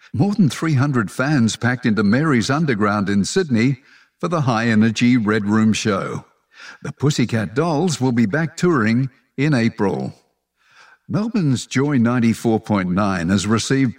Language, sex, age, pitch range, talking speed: English, male, 50-69, 105-135 Hz, 130 wpm